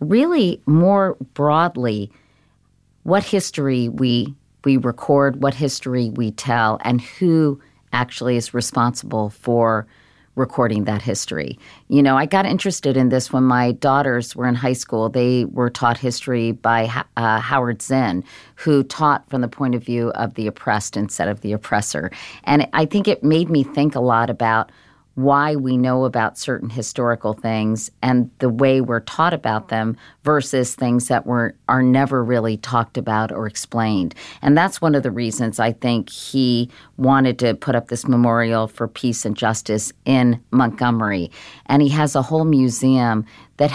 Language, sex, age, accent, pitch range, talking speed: English, female, 40-59, American, 115-140 Hz, 165 wpm